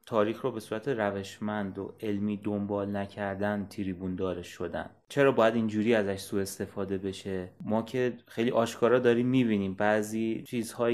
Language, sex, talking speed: Persian, male, 150 wpm